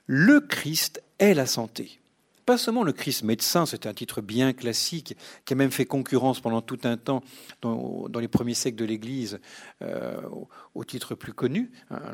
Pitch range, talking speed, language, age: 115-160 Hz, 190 wpm, French, 50-69